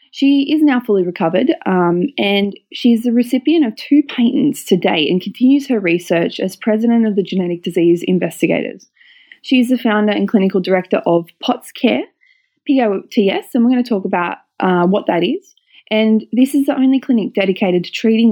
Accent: Australian